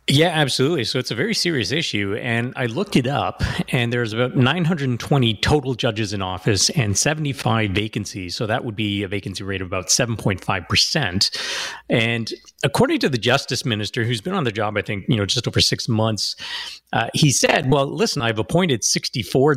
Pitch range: 105-135 Hz